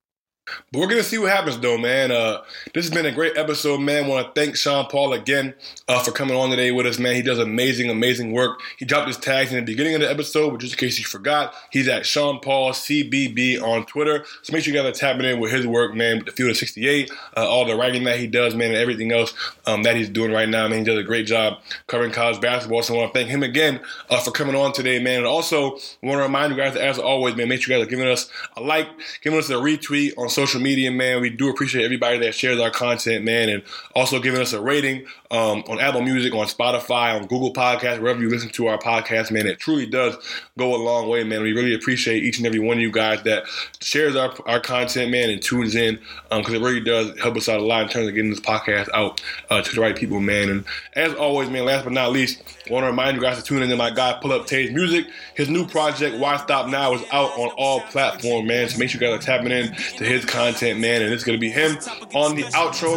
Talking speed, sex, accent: 270 wpm, male, American